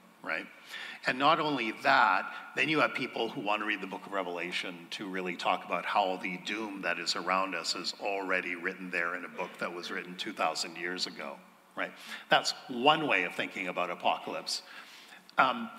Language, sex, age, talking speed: English, male, 50-69, 195 wpm